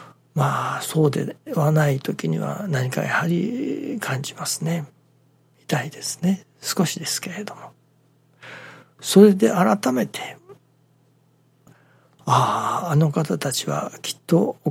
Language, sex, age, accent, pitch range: Japanese, male, 60-79, native, 140-180 Hz